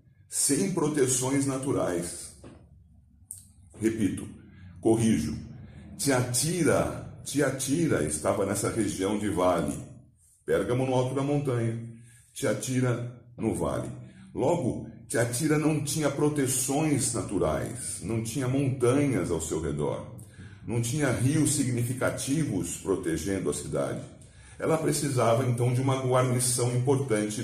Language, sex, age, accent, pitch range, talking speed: Portuguese, male, 40-59, Brazilian, 110-145 Hz, 100 wpm